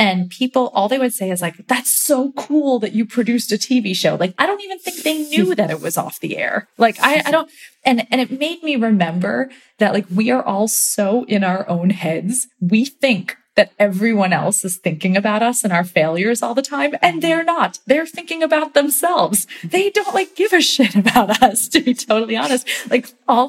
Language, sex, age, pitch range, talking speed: English, female, 20-39, 190-255 Hz, 220 wpm